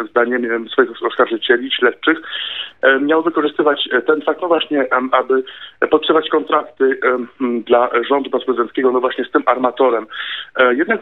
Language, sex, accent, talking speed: Polish, male, native, 120 wpm